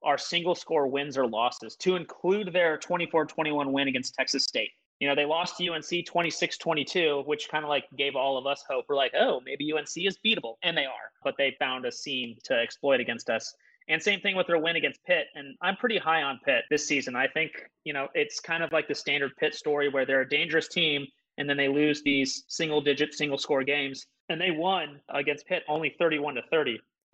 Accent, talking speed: American, 215 wpm